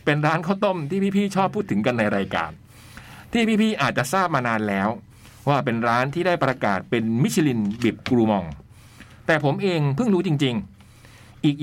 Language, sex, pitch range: Thai, male, 110-150 Hz